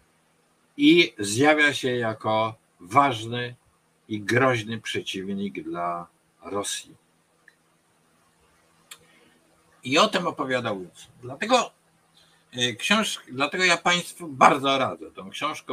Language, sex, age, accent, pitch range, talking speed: Polish, male, 50-69, native, 95-125 Hz, 90 wpm